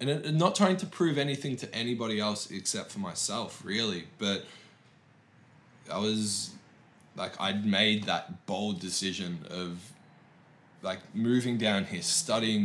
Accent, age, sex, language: Australian, 20-39, male, English